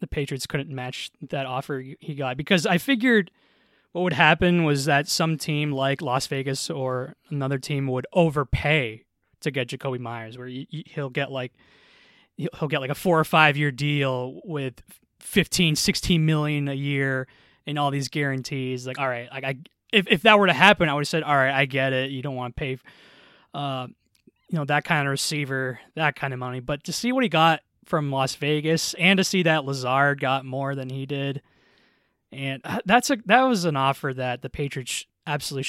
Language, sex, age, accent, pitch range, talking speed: English, male, 20-39, American, 135-175 Hz, 200 wpm